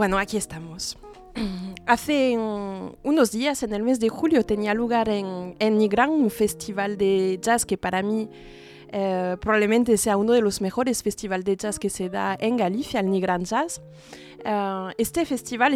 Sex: female